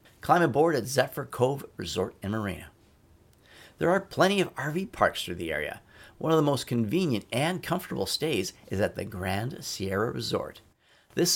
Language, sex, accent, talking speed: English, male, American, 170 wpm